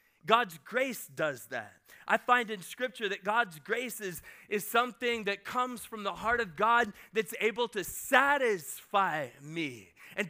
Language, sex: English, male